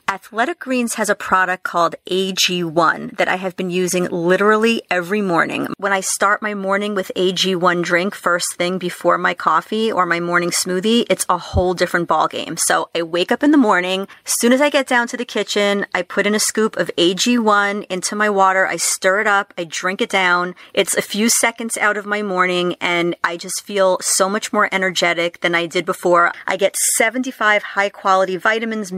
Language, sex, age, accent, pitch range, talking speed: English, female, 30-49, American, 180-220 Hz, 200 wpm